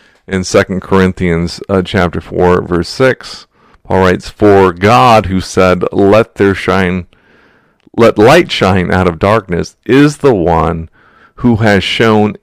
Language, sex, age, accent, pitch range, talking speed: English, male, 40-59, American, 90-105 Hz, 140 wpm